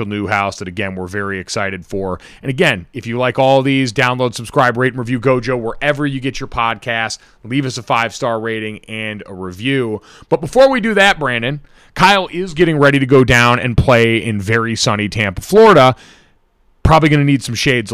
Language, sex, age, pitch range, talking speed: English, male, 30-49, 115-150 Hz, 200 wpm